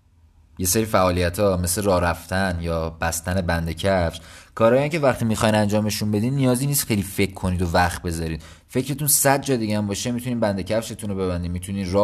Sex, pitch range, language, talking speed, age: male, 90-110 Hz, Persian, 175 wpm, 30-49